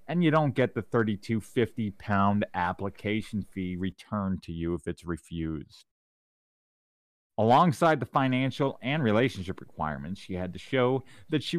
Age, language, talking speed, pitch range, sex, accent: 30-49, English, 135 wpm, 95-130 Hz, male, American